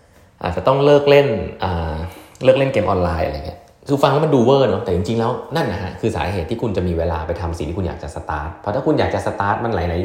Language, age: Thai, 20-39